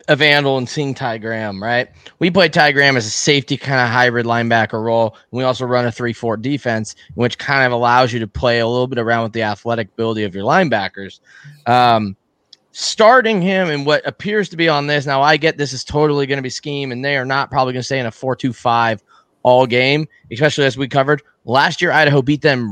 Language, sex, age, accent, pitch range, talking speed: English, male, 20-39, American, 120-150 Hz, 220 wpm